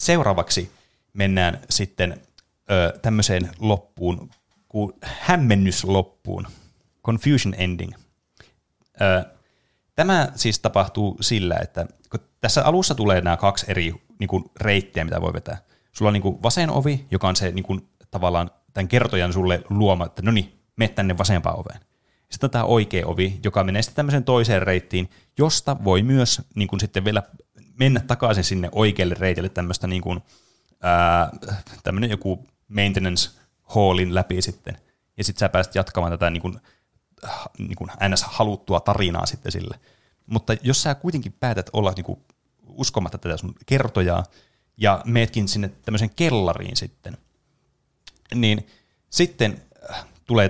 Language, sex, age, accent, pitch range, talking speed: Finnish, male, 30-49, native, 90-115 Hz, 135 wpm